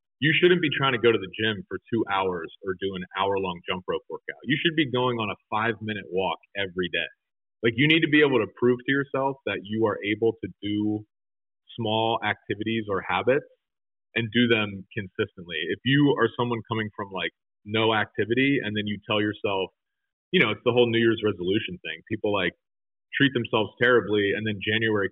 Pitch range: 105-125 Hz